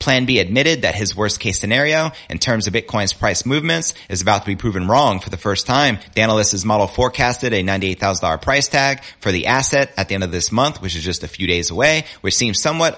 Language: English